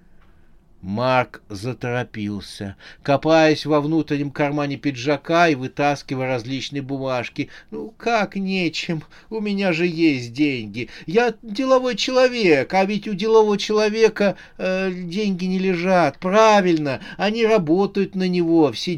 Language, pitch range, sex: Russian, 135-195 Hz, male